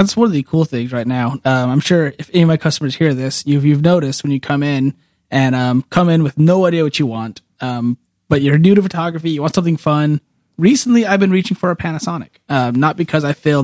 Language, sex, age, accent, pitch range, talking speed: English, male, 30-49, American, 140-180 Hz, 250 wpm